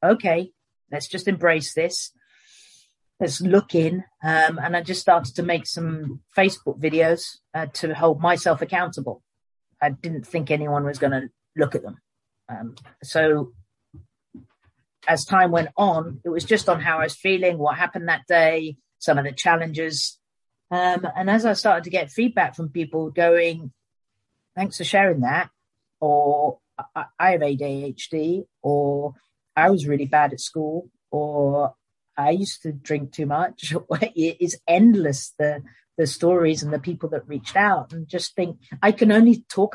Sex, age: female, 40-59